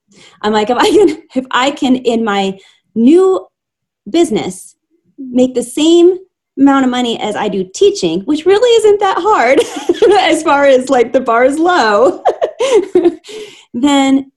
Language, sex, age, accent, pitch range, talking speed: English, female, 30-49, American, 185-265 Hz, 150 wpm